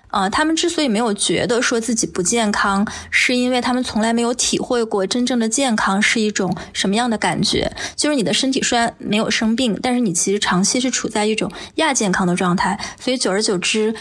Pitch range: 200-245 Hz